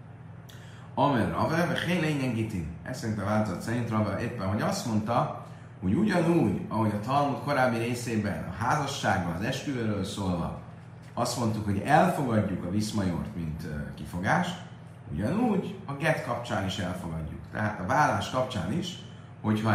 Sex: male